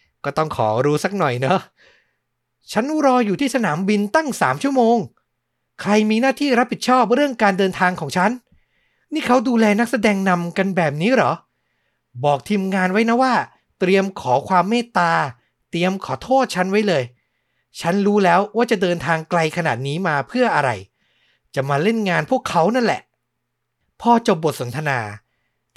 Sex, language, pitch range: male, Thai, 140-215 Hz